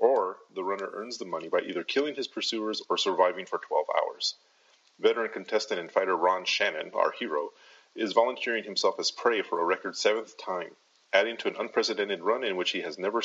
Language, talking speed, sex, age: English, 200 wpm, male, 30-49